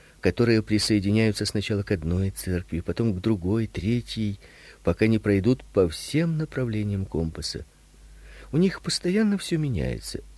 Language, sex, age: Russian, male, 50-69